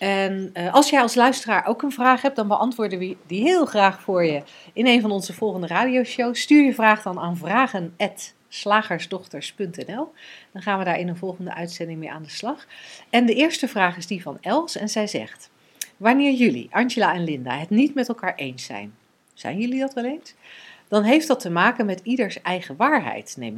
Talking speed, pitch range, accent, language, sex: 200 wpm, 175-250 Hz, Dutch, Dutch, female